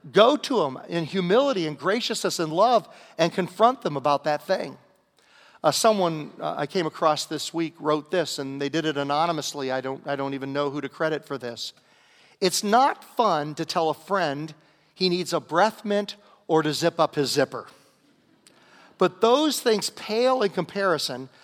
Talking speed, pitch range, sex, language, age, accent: 180 wpm, 140-180 Hz, male, English, 50-69, American